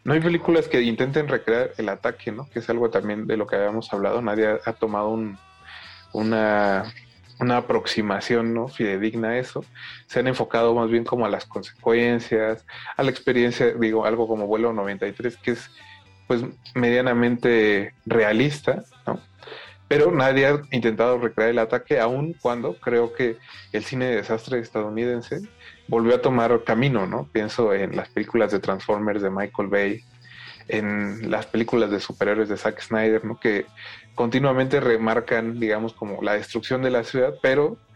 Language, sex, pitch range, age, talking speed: Spanish, male, 110-125 Hz, 30-49, 160 wpm